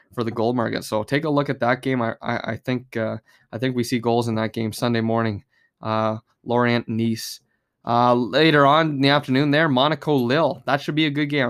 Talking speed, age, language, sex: 230 wpm, 20-39, English, male